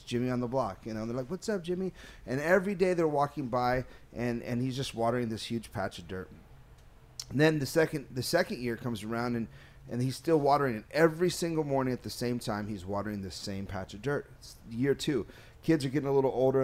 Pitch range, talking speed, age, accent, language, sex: 125-180 Hz, 240 wpm, 30-49, American, English, male